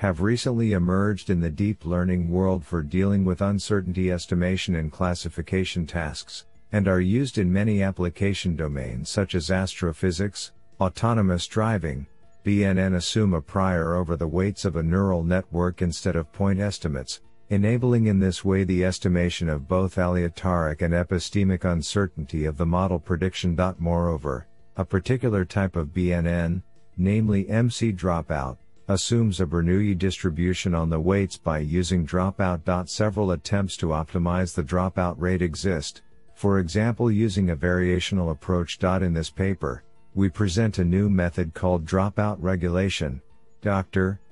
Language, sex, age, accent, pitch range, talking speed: English, male, 50-69, American, 85-100 Hz, 140 wpm